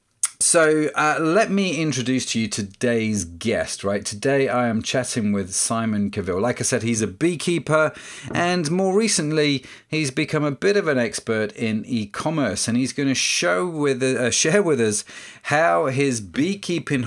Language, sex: English, male